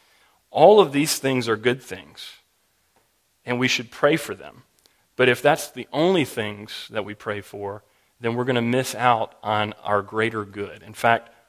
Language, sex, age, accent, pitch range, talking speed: English, male, 40-59, American, 110-140 Hz, 185 wpm